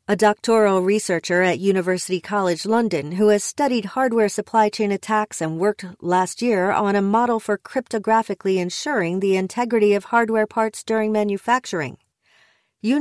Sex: female